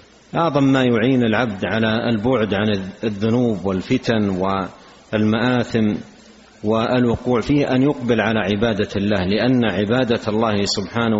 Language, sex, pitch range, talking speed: Arabic, male, 110-125 Hz, 115 wpm